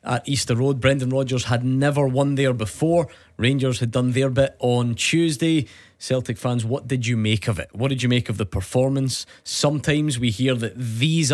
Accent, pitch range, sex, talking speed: British, 110-135 Hz, male, 195 wpm